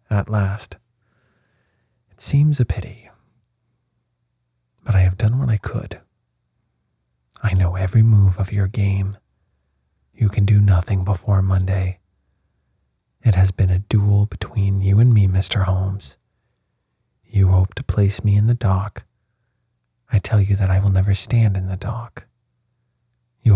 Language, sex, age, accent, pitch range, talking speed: English, male, 40-59, American, 95-115 Hz, 145 wpm